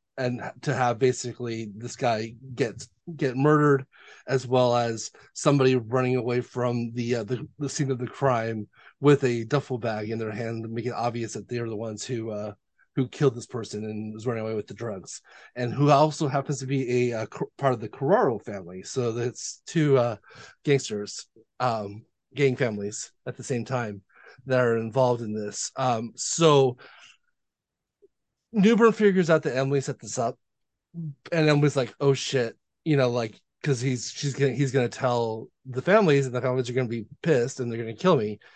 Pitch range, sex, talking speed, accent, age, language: 115-140 Hz, male, 195 wpm, American, 30-49, English